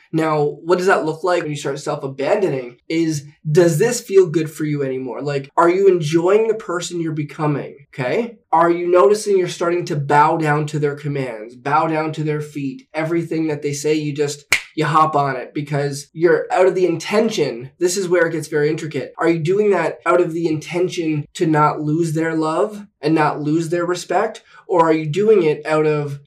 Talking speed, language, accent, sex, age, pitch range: 210 wpm, English, American, male, 20-39, 145-180 Hz